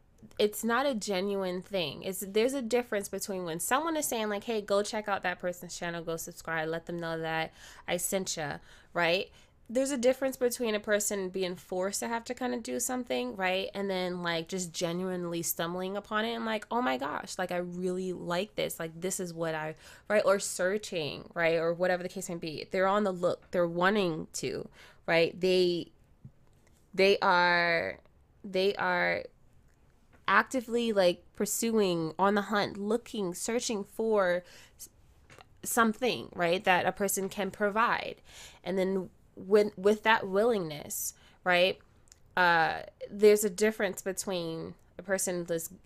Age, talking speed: 20-39, 165 wpm